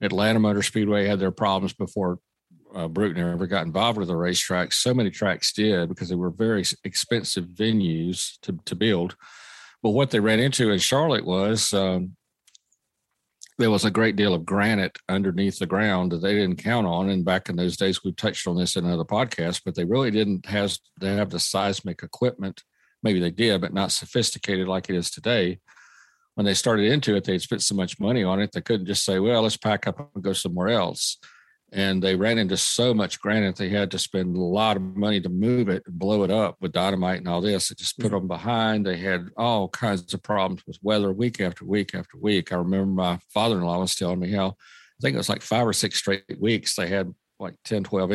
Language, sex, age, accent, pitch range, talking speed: English, male, 50-69, American, 90-105 Hz, 220 wpm